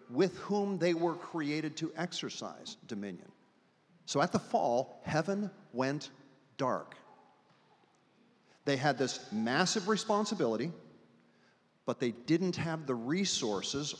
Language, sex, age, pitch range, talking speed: English, male, 50-69, 125-180 Hz, 110 wpm